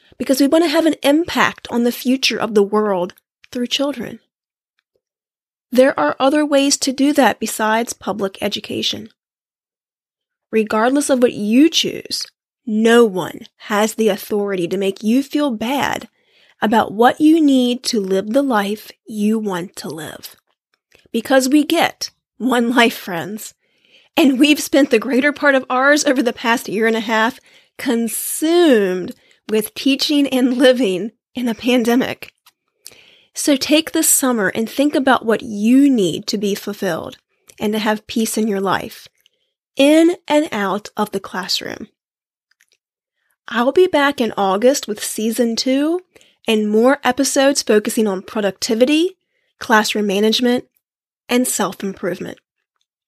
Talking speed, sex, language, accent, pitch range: 140 wpm, female, English, American, 215-280 Hz